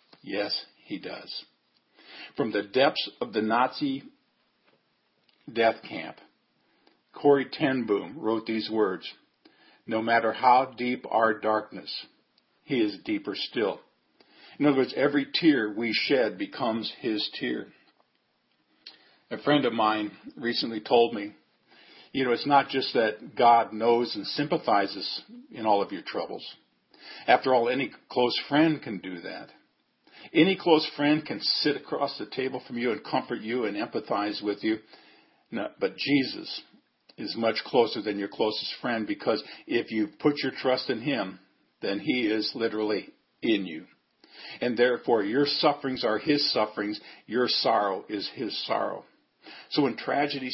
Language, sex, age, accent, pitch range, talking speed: English, male, 50-69, American, 110-145 Hz, 145 wpm